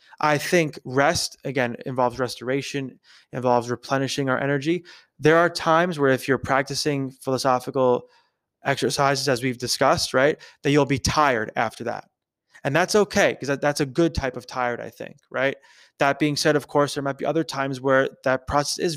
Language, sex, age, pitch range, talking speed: English, male, 20-39, 130-160 Hz, 180 wpm